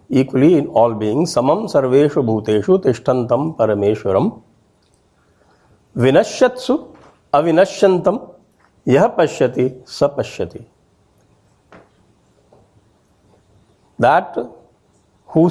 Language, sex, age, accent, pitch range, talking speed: English, male, 50-69, Indian, 105-180 Hz, 60 wpm